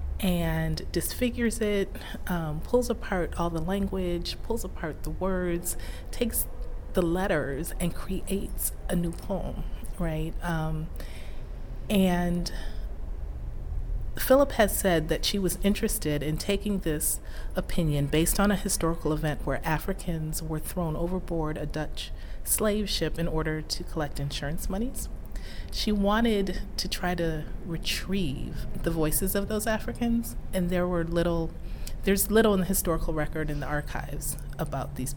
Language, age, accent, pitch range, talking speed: English, 40-59, American, 150-195 Hz, 140 wpm